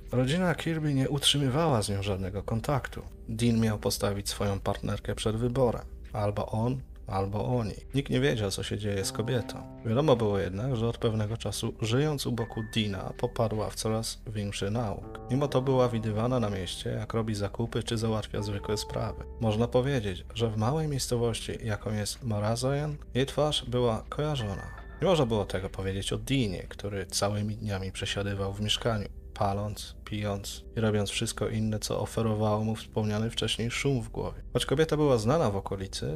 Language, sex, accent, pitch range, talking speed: Polish, male, native, 105-125 Hz, 170 wpm